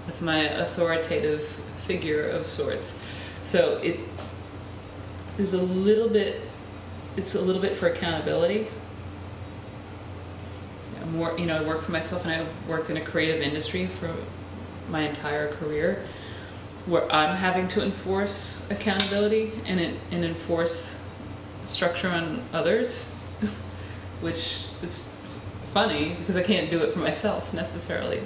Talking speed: 130 wpm